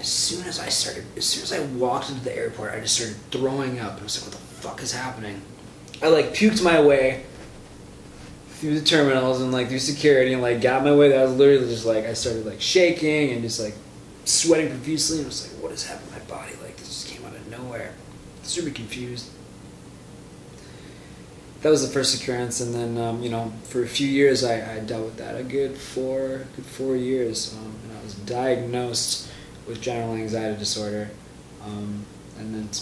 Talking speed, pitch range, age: 210 wpm, 110-130 Hz, 20-39